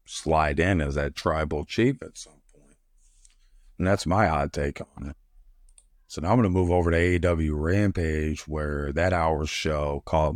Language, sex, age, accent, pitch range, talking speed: English, male, 50-69, American, 75-90 Hz, 175 wpm